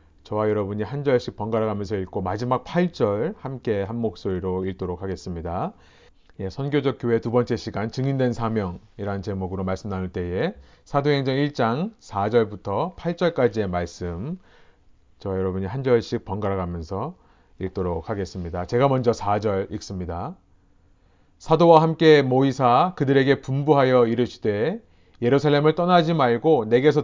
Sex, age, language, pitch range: male, 30-49, Korean, 100-145 Hz